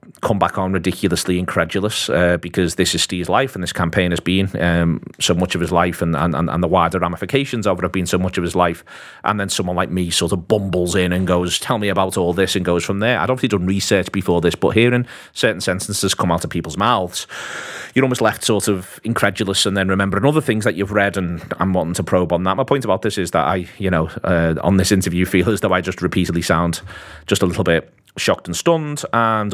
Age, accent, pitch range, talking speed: 30-49, British, 85-100 Hz, 245 wpm